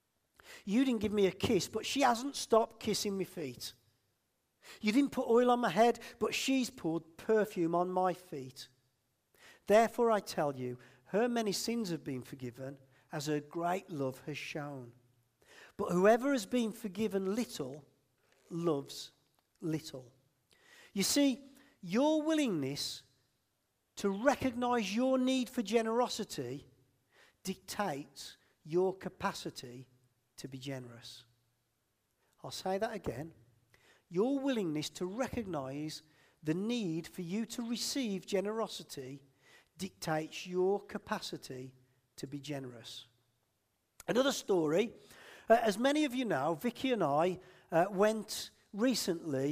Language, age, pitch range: English, 50-69, 135-220 Hz